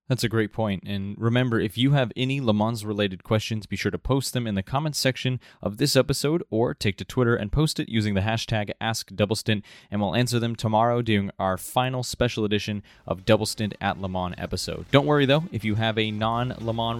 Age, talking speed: 20-39, 220 wpm